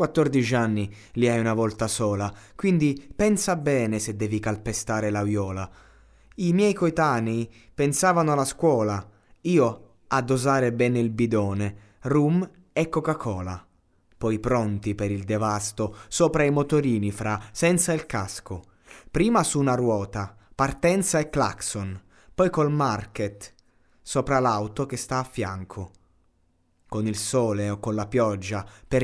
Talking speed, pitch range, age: 135 wpm, 100-130 Hz, 20-39